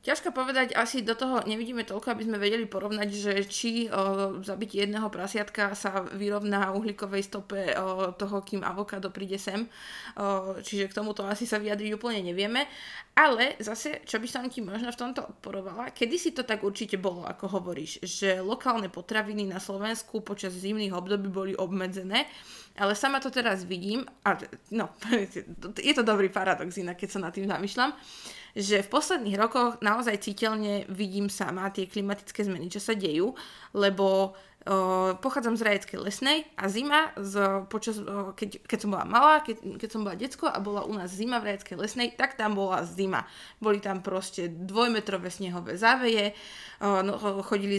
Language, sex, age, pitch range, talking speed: Slovak, female, 20-39, 195-225 Hz, 170 wpm